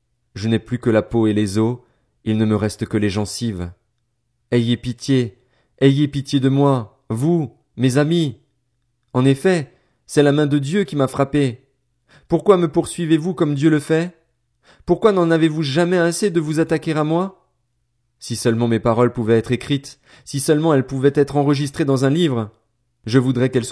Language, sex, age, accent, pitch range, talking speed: French, male, 30-49, French, 110-140 Hz, 180 wpm